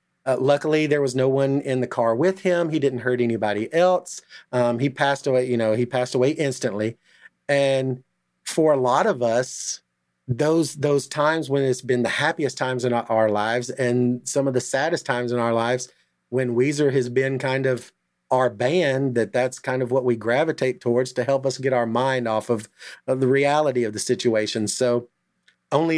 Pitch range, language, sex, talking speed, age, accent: 120-140 Hz, English, male, 195 wpm, 40-59, American